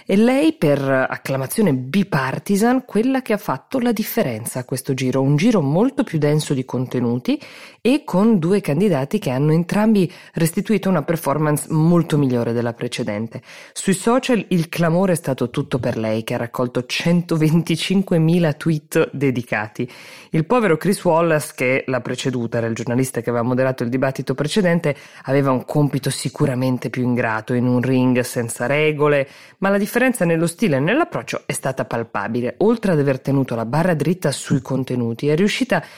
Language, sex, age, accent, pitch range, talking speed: Italian, female, 20-39, native, 130-190 Hz, 165 wpm